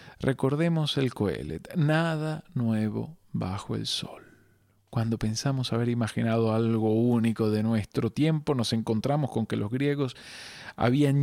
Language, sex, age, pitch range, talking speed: Spanish, male, 40-59, 110-145 Hz, 130 wpm